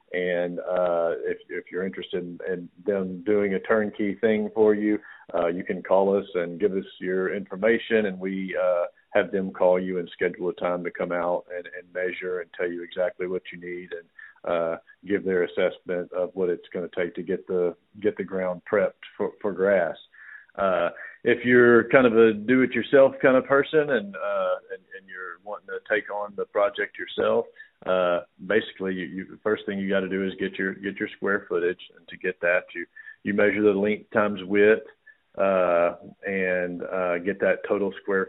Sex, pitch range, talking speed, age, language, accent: male, 90-135 Hz, 200 wpm, 50-69, English, American